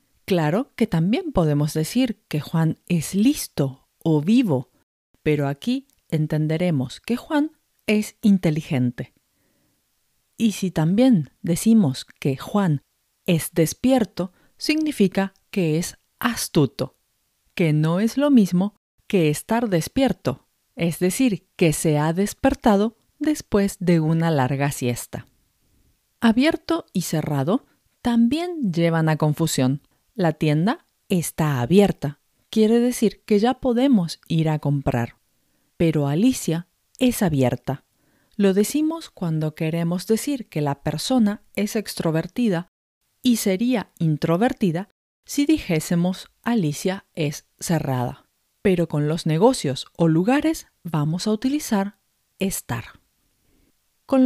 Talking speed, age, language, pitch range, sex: 110 wpm, 40-59, Spanish, 155-230 Hz, female